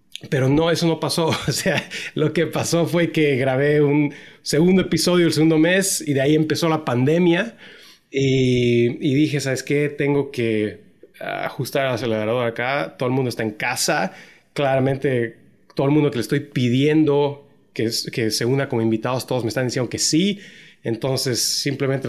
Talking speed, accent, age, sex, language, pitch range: 175 wpm, Mexican, 30-49, male, Spanish, 125-155 Hz